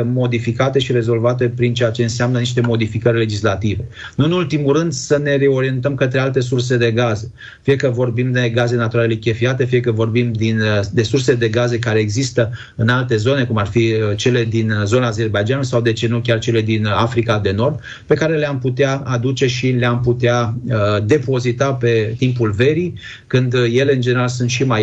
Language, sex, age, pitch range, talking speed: Romanian, male, 30-49, 115-130 Hz, 190 wpm